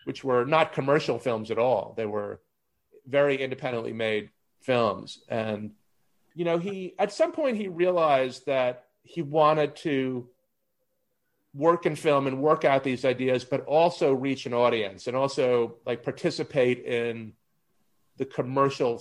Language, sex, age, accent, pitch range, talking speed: English, male, 40-59, American, 125-155 Hz, 145 wpm